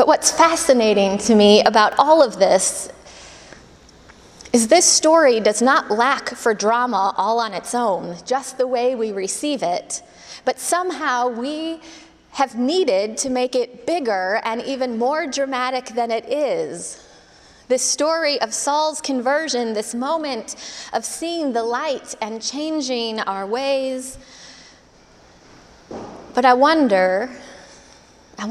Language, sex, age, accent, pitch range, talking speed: English, female, 20-39, American, 215-270 Hz, 130 wpm